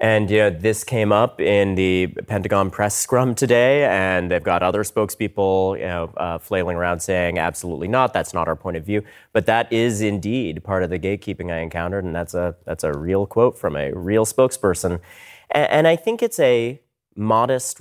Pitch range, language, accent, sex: 95-130 Hz, English, American, male